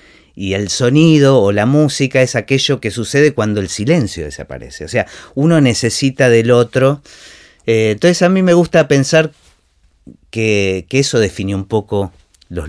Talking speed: 160 wpm